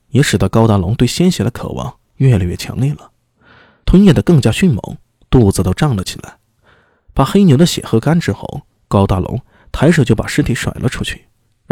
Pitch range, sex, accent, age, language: 105-155 Hz, male, native, 20-39, Chinese